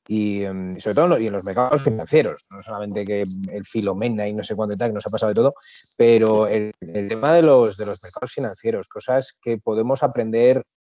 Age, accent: 30-49, Spanish